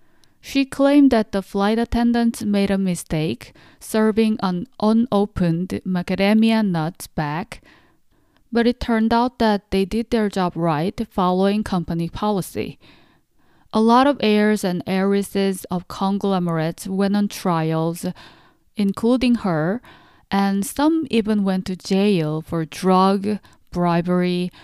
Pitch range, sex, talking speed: 180-220 Hz, female, 120 wpm